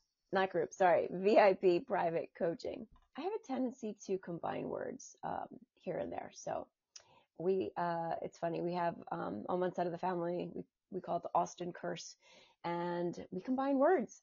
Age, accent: 30-49, American